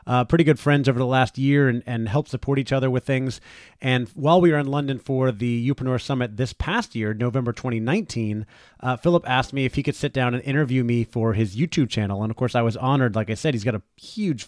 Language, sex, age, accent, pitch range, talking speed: English, male, 30-49, American, 120-140 Hz, 250 wpm